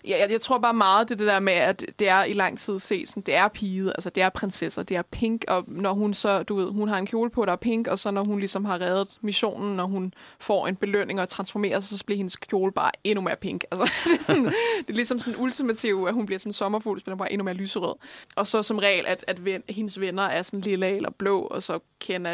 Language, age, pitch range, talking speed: Danish, 20-39, 190-220 Hz, 275 wpm